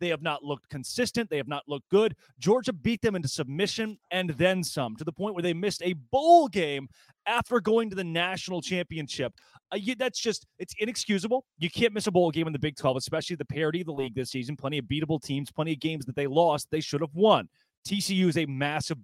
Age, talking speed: 30-49, 230 wpm